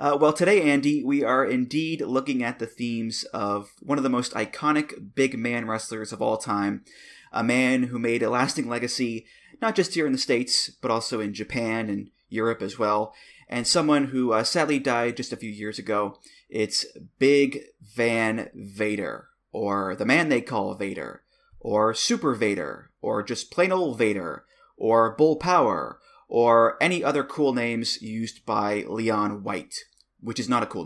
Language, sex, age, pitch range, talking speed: English, male, 20-39, 110-145 Hz, 175 wpm